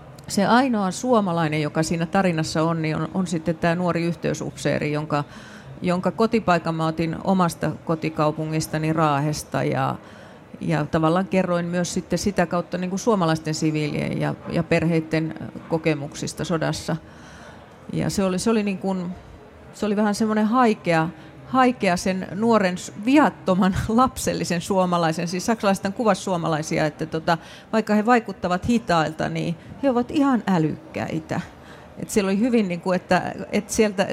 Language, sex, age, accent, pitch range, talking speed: Finnish, female, 30-49, native, 160-200 Hz, 130 wpm